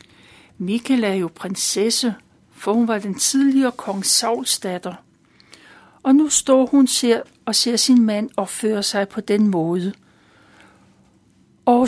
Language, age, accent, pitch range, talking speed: Danish, 60-79, native, 195-245 Hz, 130 wpm